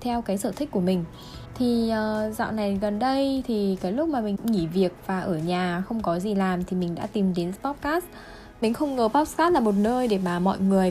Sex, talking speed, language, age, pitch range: female, 230 wpm, Vietnamese, 10-29, 190-245 Hz